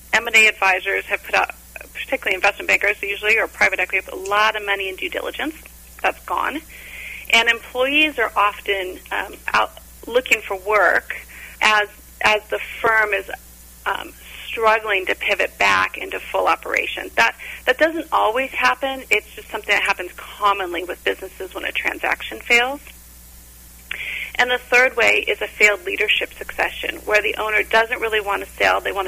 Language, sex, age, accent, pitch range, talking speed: English, female, 40-59, American, 190-250 Hz, 165 wpm